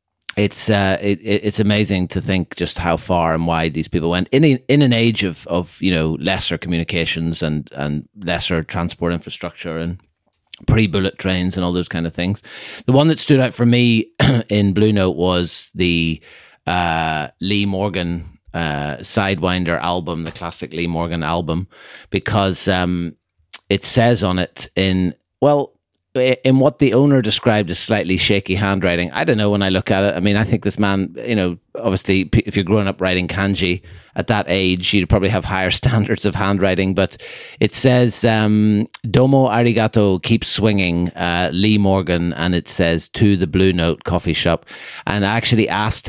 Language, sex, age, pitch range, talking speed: English, male, 30-49, 85-105 Hz, 180 wpm